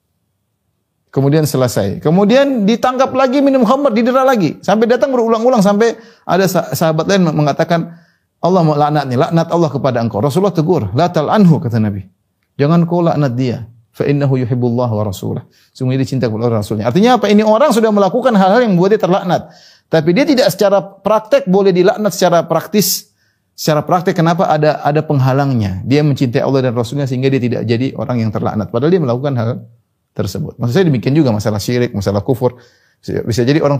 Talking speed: 175 wpm